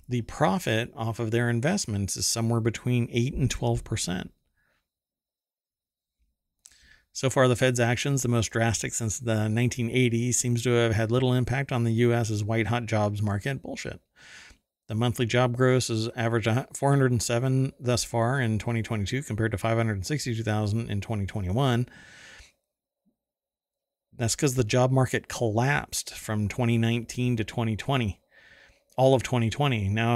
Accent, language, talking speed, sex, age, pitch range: American, English, 135 wpm, male, 40-59, 105-125 Hz